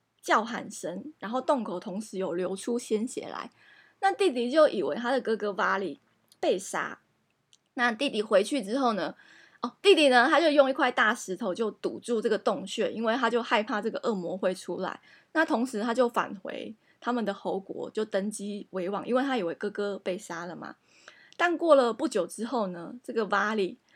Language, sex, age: Chinese, female, 20-39